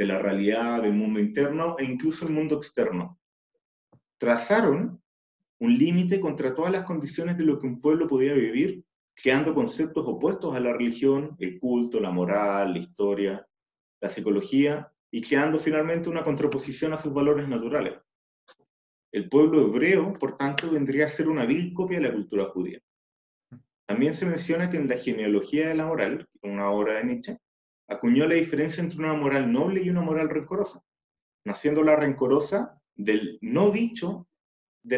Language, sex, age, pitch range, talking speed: Spanish, male, 30-49, 105-165 Hz, 165 wpm